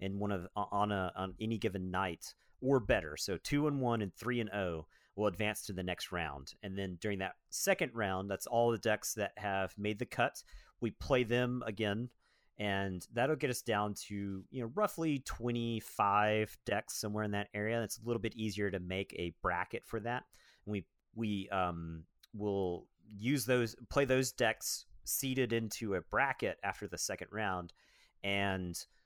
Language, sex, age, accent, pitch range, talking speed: English, male, 40-59, American, 95-115 Hz, 185 wpm